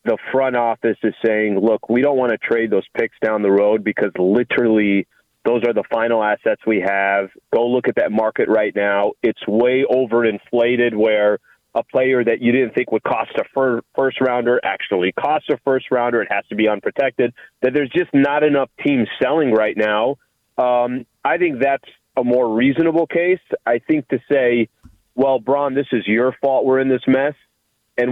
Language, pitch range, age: English, 115-145 Hz, 30-49